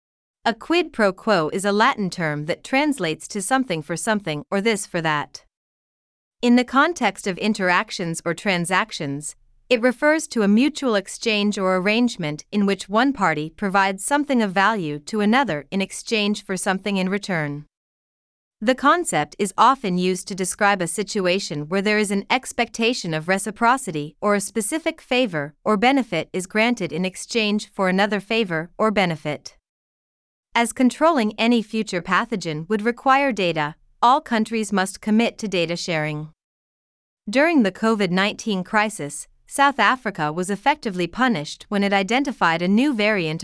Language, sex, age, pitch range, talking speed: Vietnamese, female, 30-49, 175-230 Hz, 150 wpm